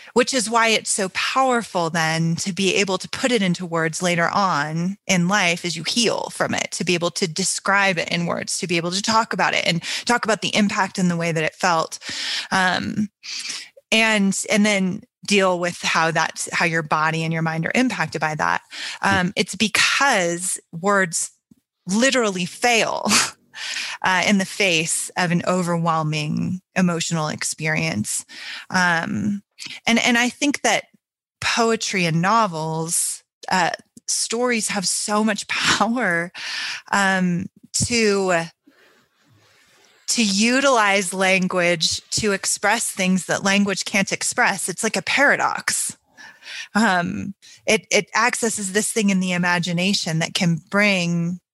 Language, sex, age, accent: English, female, 20-39, American